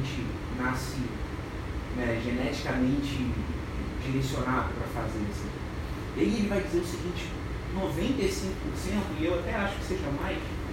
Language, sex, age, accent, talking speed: Portuguese, male, 30-49, Brazilian, 115 wpm